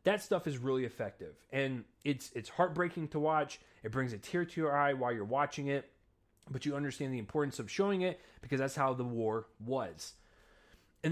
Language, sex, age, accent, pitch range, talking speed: English, male, 20-39, American, 115-160 Hz, 200 wpm